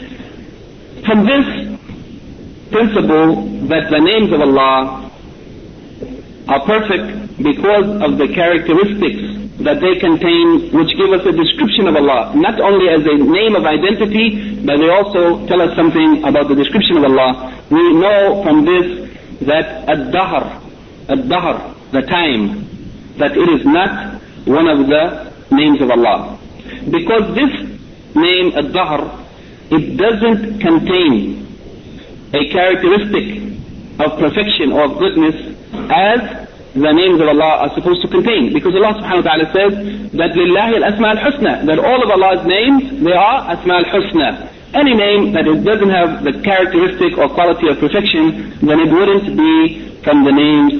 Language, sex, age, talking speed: English, male, 50-69, 150 wpm